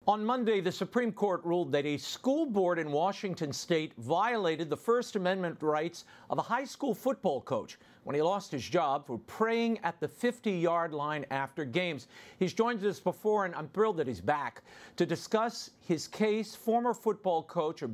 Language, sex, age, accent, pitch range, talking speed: English, male, 50-69, American, 145-205 Hz, 185 wpm